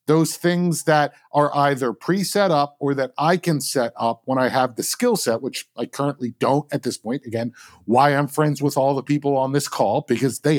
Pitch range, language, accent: 135-160 Hz, English, American